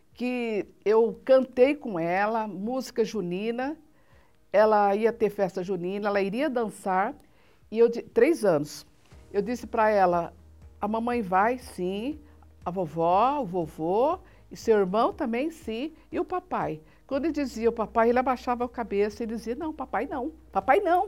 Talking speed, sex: 150 wpm, female